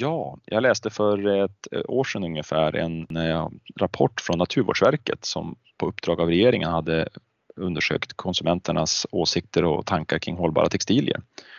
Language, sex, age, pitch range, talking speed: Swedish, male, 30-49, 80-90 Hz, 135 wpm